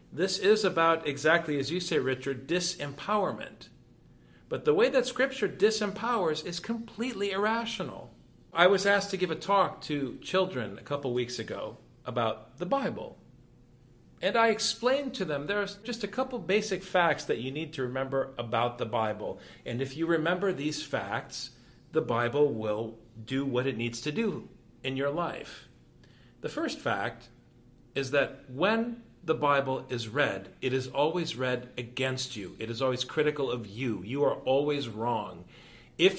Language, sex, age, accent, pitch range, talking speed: English, male, 50-69, American, 130-195 Hz, 165 wpm